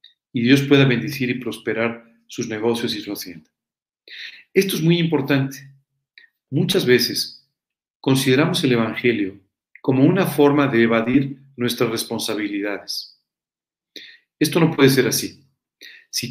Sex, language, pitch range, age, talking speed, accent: male, Spanish, 115-145 Hz, 40-59, 120 wpm, Mexican